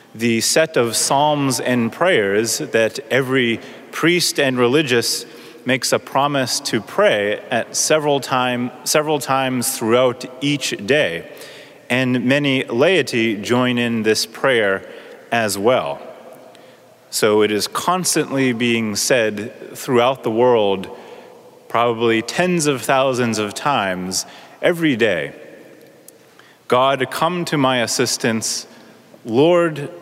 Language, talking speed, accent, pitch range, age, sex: English, 110 wpm, American, 120-150 Hz, 30-49, male